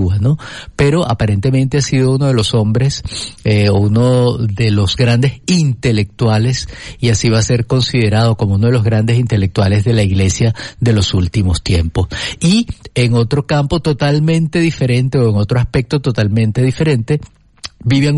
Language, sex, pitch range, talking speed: Spanish, male, 105-125 Hz, 150 wpm